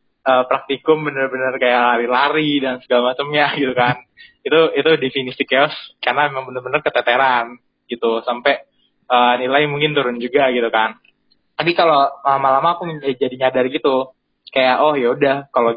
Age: 20-39